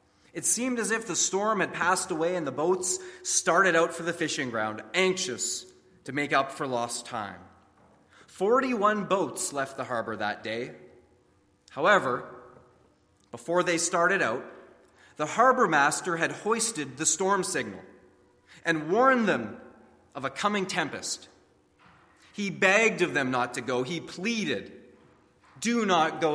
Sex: male